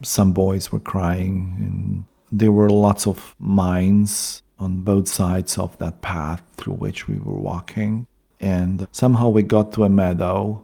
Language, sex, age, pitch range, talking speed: English, male, 40-59, 95-105 Hz, 160 wpm